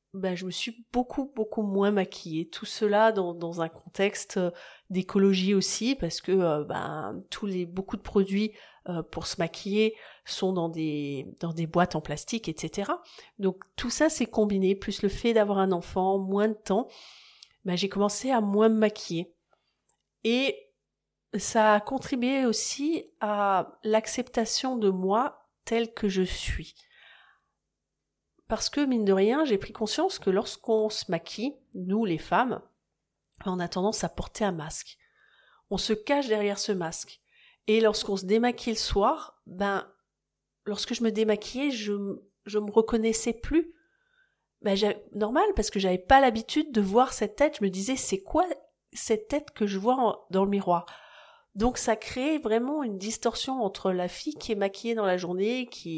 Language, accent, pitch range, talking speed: French, French, 190-235 Hz, 170 wpm